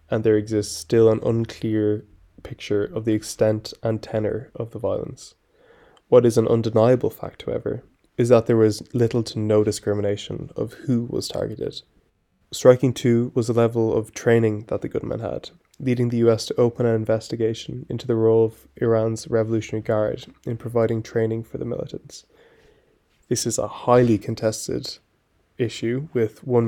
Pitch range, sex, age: 110-120 Hz, male, 20-39